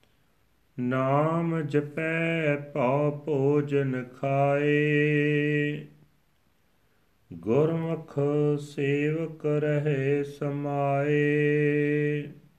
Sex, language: male, Punjabi